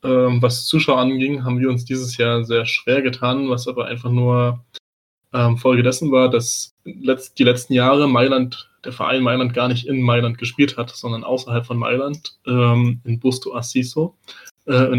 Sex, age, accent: male, 20-39, German